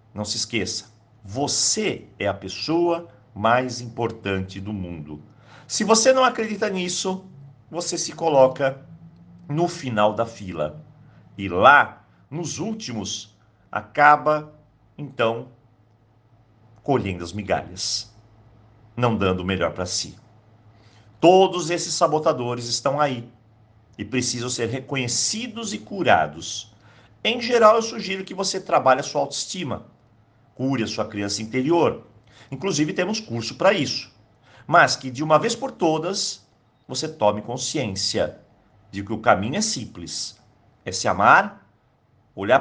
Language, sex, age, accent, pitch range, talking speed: Portuguese, male, 50-69, Brazilian, 110-165 Hz, 125 wpm